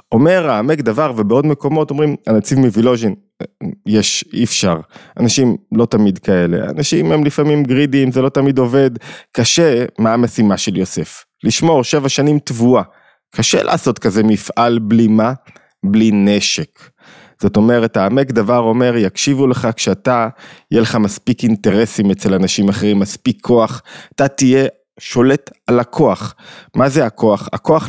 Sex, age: male, 20-39